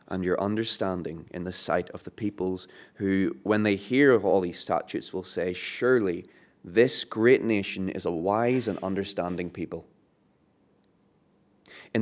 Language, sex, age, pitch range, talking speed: English, male, 20-39, 90-115 Hz, 150 wpm